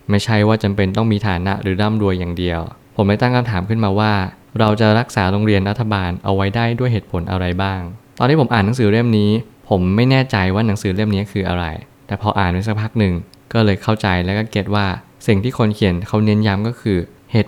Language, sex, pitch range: Thai, male, 95-115 Hz